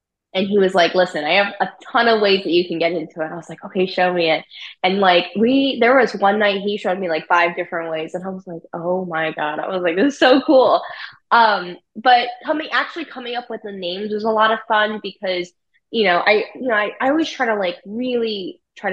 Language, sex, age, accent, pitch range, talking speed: English, female, 10-29, American, 175-225 Hz, 255 wpm